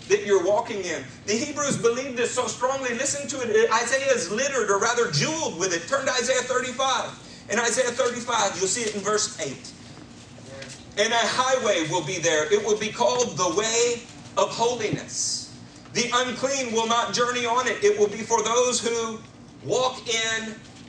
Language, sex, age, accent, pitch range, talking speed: English, male, 40-59, American, 215-260 Hz, 180 wpm